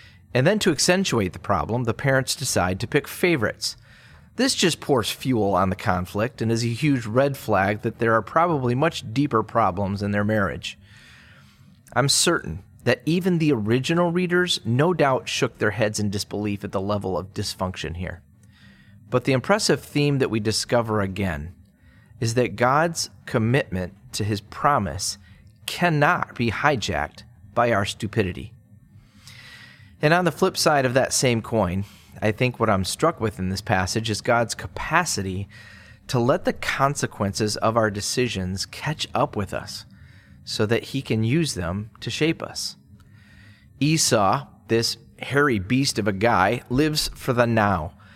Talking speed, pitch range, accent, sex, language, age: 160 wpm, 100-135 Hz, American, male, English, 30-49